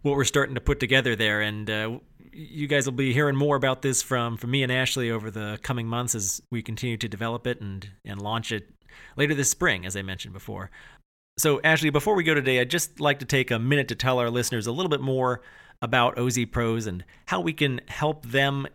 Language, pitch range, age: English, 115-140 Hz, 40-59